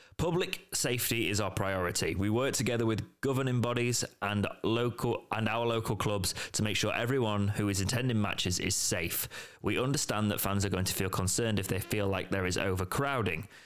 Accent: British